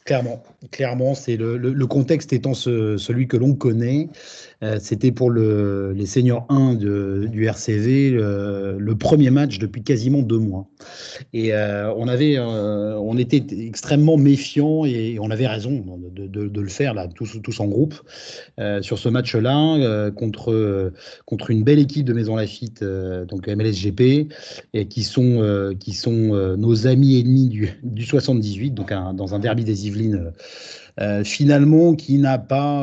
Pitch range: 105-135 Hz